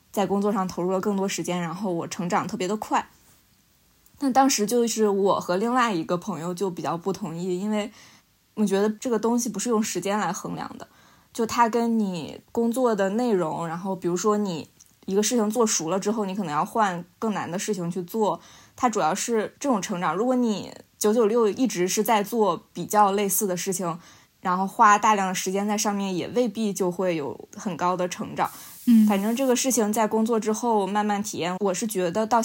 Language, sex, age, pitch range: Chinese, female, 20-39, 180-215 Hz